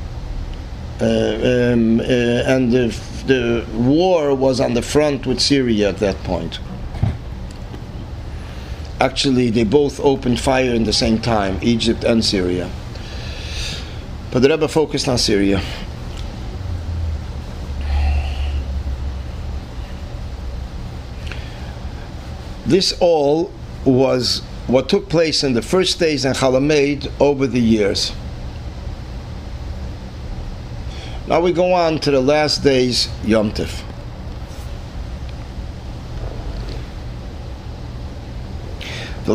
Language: English